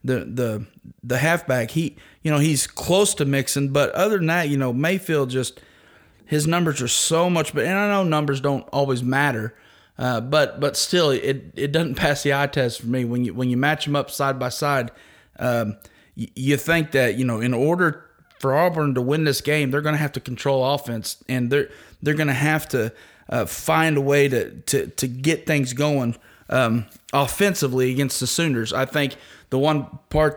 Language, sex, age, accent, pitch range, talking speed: English, male, 30-49, American, 125-150 Hz, 205 wpm